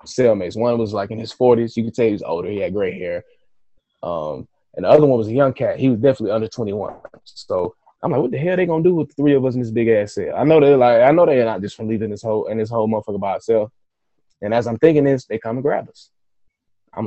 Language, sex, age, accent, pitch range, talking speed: English, male, 20-39, American, 115-150 Hz, 280 wpm